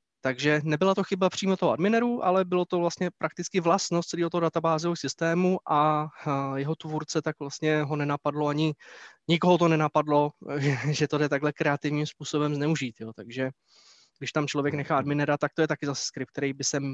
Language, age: Czech, 20-39